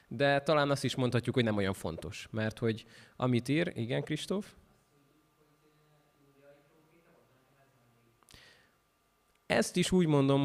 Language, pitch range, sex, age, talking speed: Hungarian, 115-145 Hz, male, 20-39, 110 wpm